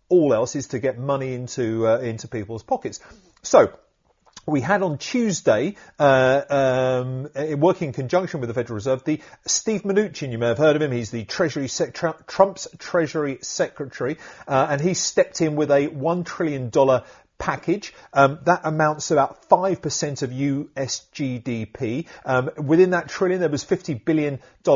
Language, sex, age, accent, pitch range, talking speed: English, male, 40-59, British, 130-160 Hz, 165 wpm